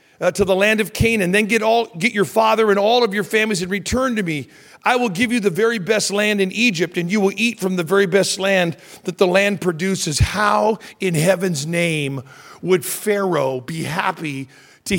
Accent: American